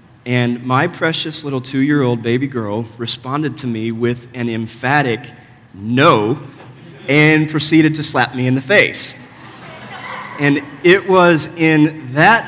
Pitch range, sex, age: 125-150 Hz, male, 30-49